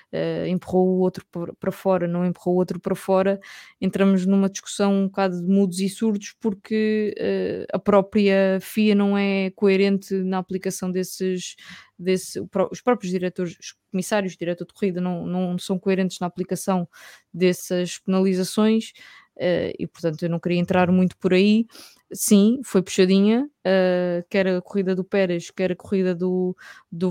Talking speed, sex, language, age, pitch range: 150 wpm, female, English, 20-39, 175-195 Hz